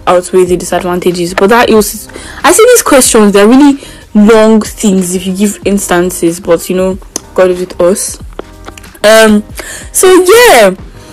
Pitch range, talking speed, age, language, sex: 190-265 Hz, 150 wpm, 10-29, English, female